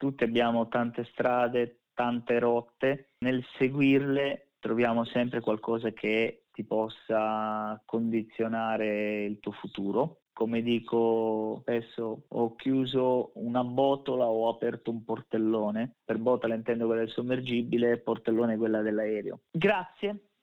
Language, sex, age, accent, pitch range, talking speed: Italian, male, 30-49, native, 110-125 Hz, 115 wpm